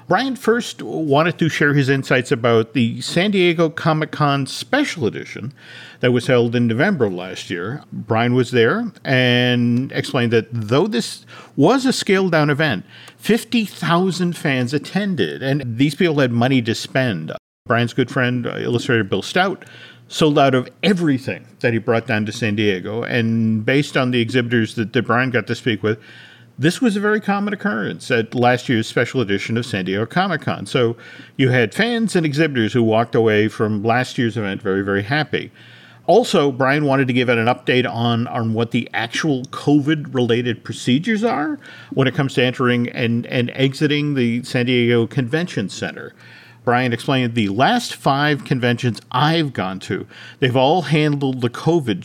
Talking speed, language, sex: 170 wpm, English, male